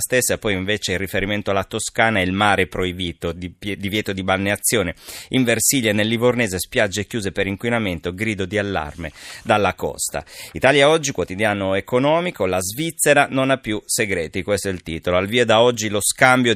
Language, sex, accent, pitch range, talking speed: Italian, male, native, 95-120 Hz, 175 wpm